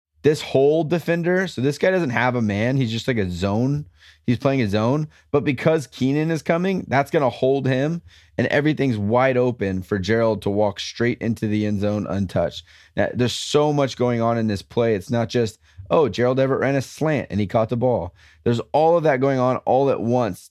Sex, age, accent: male, 20-39, American